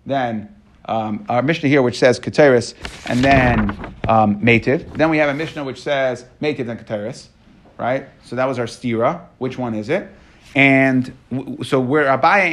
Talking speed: 175 wpm